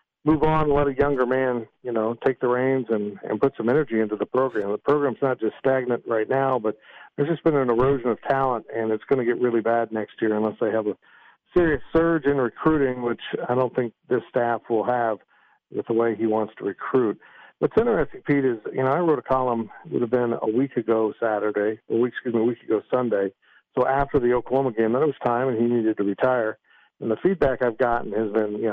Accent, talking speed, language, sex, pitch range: American, 235 wpm, English, male, 110-135 Hz